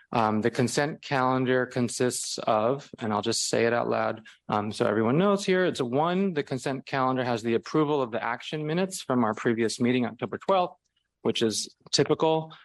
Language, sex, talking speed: English, male, 190 wpm